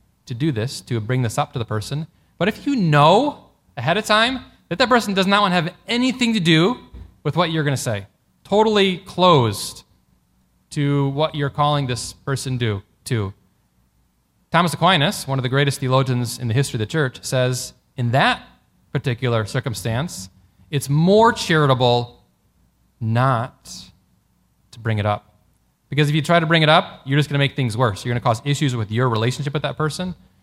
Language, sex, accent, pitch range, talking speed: English, male, American, 115-160 Hz, 190 wpm